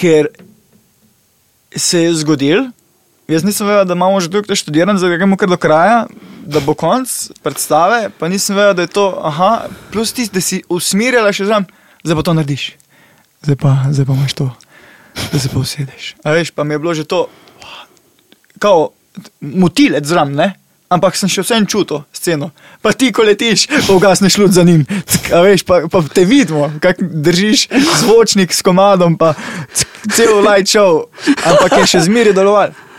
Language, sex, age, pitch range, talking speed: English, male, 20-39, 150-200 Hz, 175 wpm